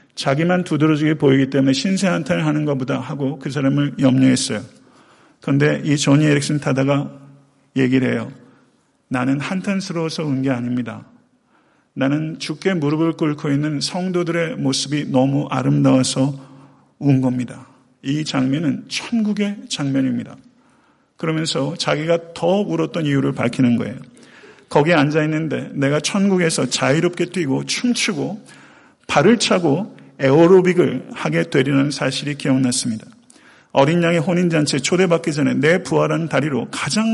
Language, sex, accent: Korean, male, native